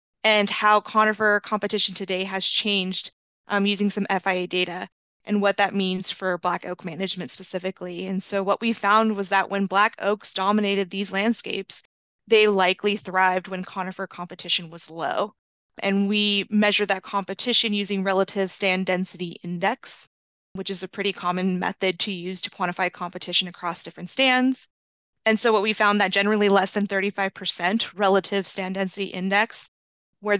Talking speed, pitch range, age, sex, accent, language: 160 wpm, 185-210 Hz, 20-39, female, American, English